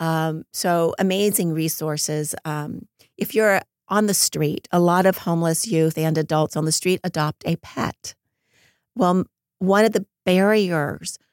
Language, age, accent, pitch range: English, 40-59, American, 150-170 Hz